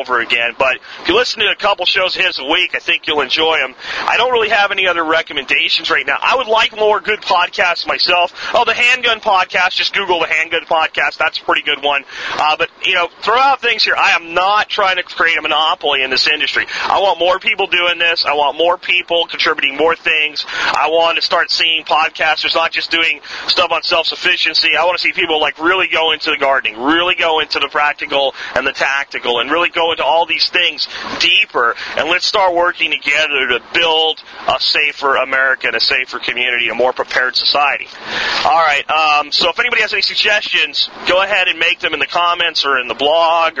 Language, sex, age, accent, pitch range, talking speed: English, male, 30-49, American, 145-180 Hz, 215 wpm